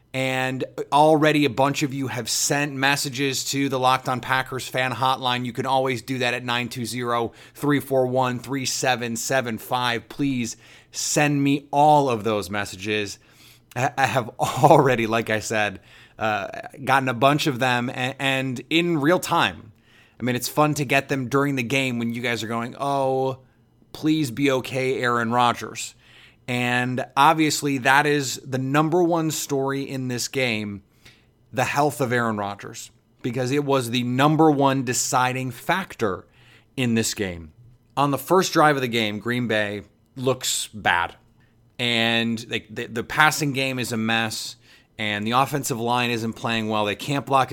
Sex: male